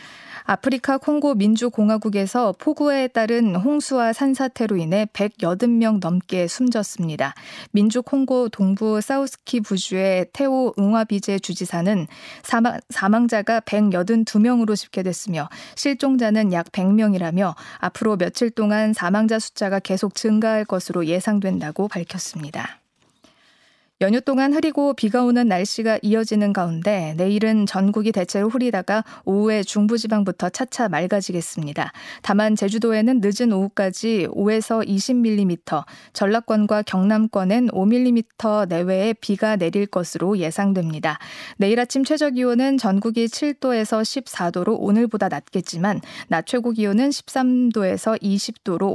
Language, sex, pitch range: Korean, female, 190-230 Hz